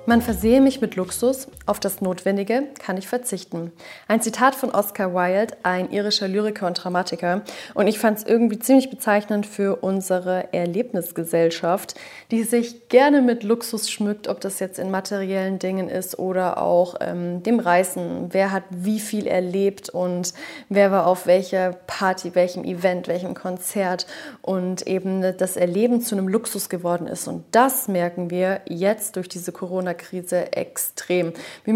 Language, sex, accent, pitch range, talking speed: German, female, German, 185-215 Hz, 160 wpm